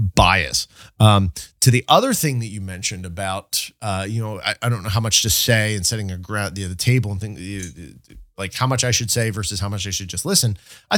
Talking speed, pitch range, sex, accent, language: 240 wpm, 95-125 Hz, male, American, English